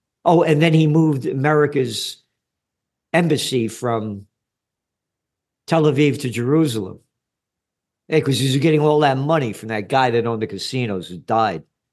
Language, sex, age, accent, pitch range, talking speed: English, male, 50-69, American, 135-195 Hz, 140 wpm